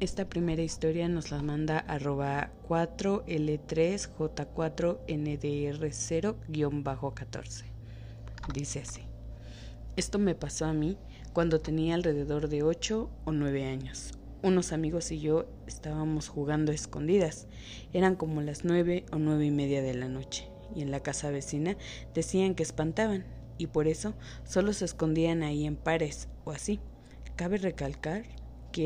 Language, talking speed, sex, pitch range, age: Spanish, 130 wpm, female, 140-175 Hz, 20-39